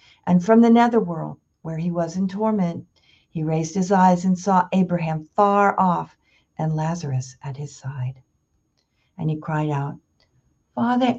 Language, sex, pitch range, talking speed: English, female, 155-195 Hz, 150 wpm